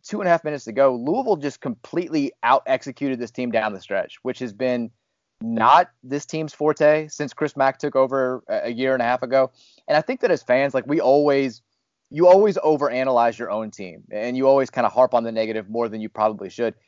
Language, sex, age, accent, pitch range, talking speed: English, male, 30-49, American, 120-150 Hz, 225 wpm